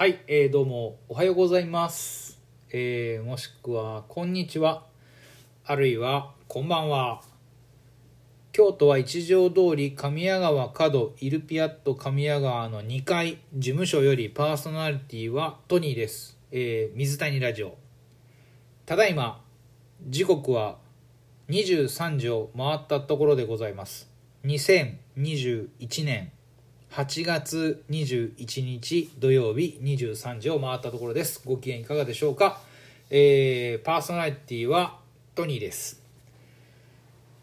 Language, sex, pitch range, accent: Japanese, male, 120-160 Hz, native